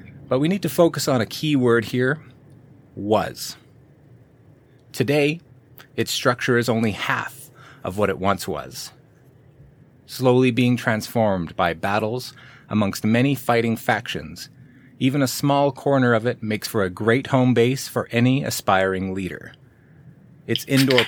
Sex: male